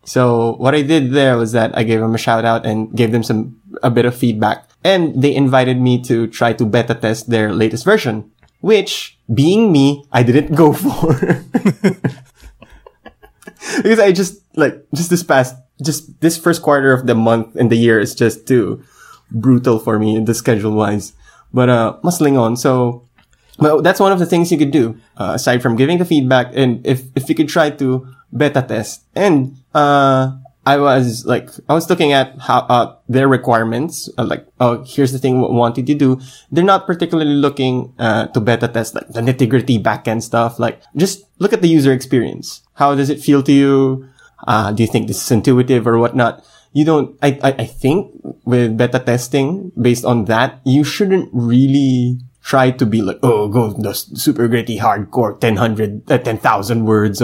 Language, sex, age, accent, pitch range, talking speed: English, male, 20-39, Filipino, 115-145 Hz, 195 wpm